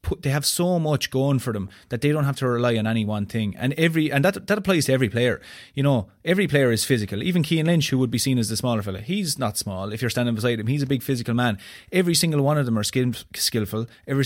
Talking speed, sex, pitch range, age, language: 275 wpm, male, 115-145 Hz, 30-49, English